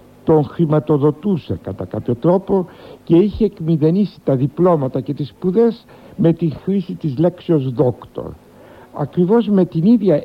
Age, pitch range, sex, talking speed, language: 60-79, 120-165 Hz, male, 135 wpm, Greek